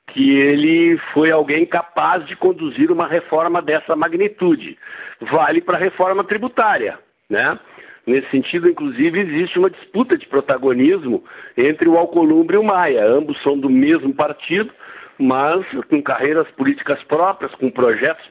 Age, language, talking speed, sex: 60-79, Portuguese, 140 wpm, male